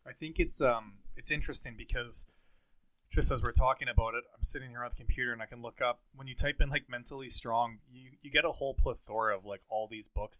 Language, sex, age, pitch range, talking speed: English, male, 20-39, 100-115 Hz, 240 wpm